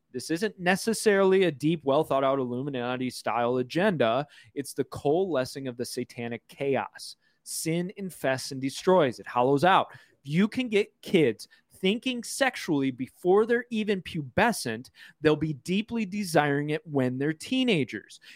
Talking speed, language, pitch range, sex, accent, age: 130 wpm, English, 135-190 Hz, male, American, 30-49